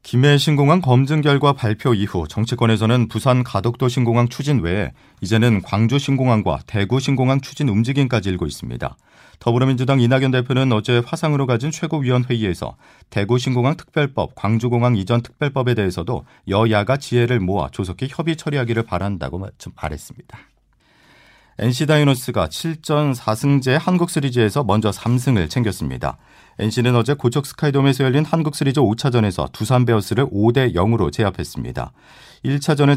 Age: 40-59